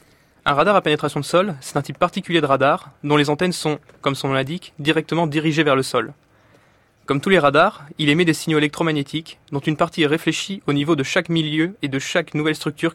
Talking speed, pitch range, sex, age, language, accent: 225 wpm, 145-170 Hz, male, 20-39, French, French